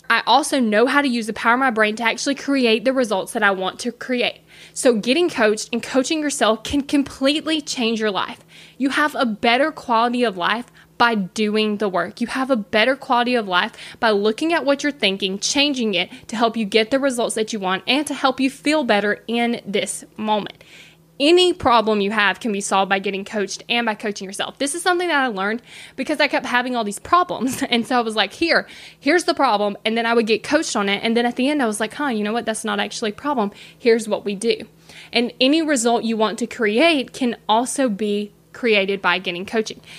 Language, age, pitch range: English, 20-39, 210-265 Hz